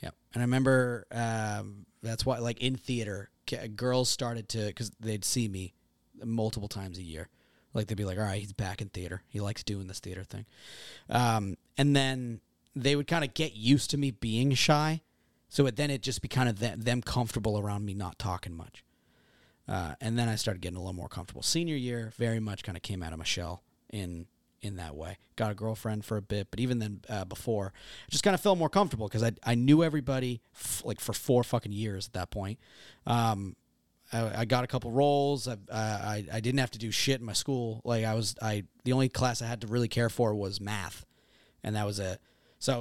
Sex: male